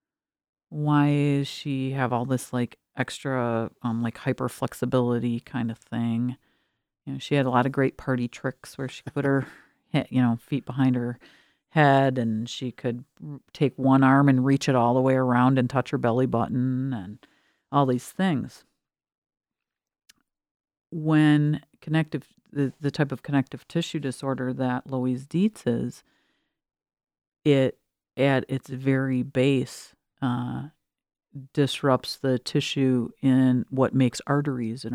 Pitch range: 120-135 Hz